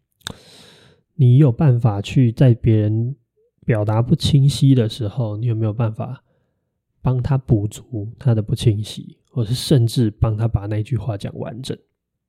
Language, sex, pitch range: Chinese, male, 115-135 Hz